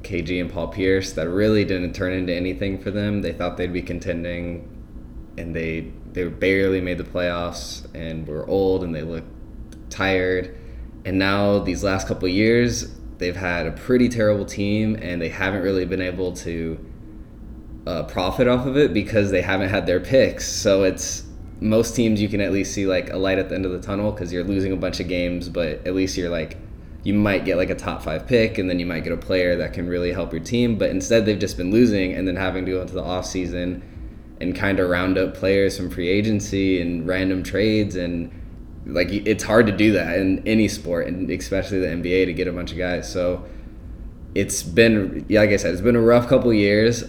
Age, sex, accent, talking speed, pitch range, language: 20-39, male, American, 220 wpm, 90-100 Hz, English